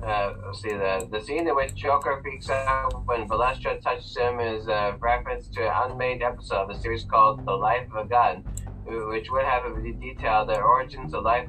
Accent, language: American, English